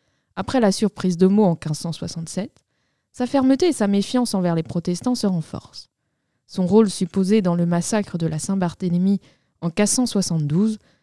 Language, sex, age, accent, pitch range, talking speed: French, female, 20-39, French, 165-215 Hz, 150 wpm